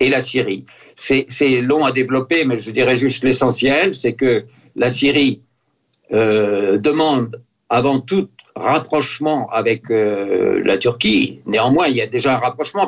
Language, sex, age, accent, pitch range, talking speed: French, male, 60-79, French, 120-155 Hz, 155 wpm